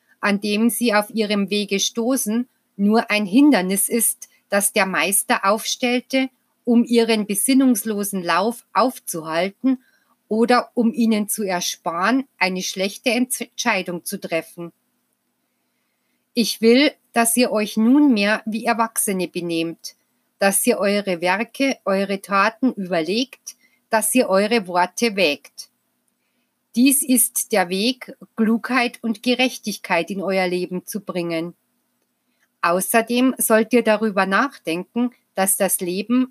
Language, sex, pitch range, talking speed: German, female, 195-240 Hz, 115 wpm